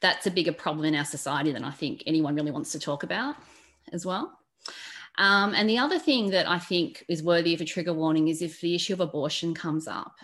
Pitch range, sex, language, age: 155-185 Hz, female, English, 30-49